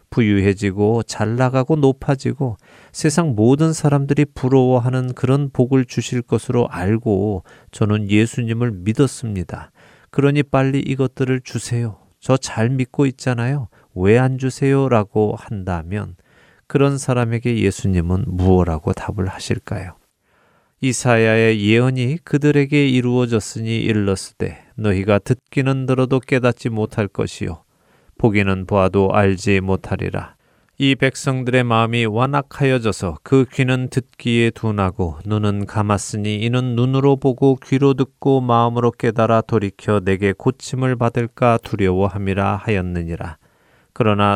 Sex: male